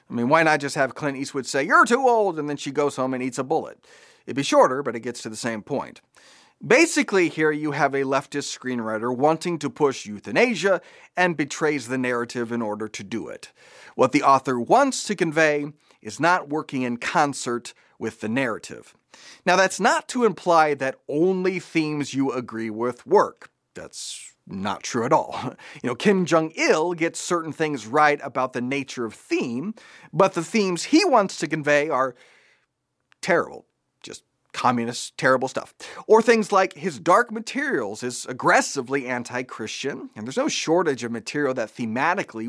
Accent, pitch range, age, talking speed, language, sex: American, 130-180 Hz, 40-59, 175 wpm, English, male